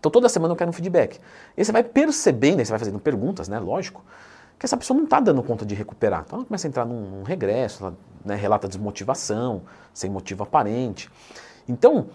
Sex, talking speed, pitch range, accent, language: male, 205 wpm, 110-160 Hz, Brazilian, Portuguese